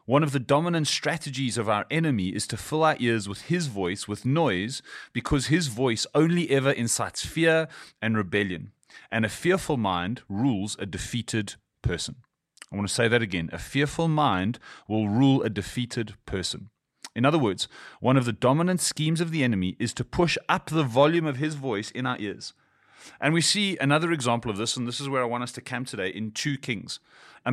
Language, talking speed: English, 205 wpm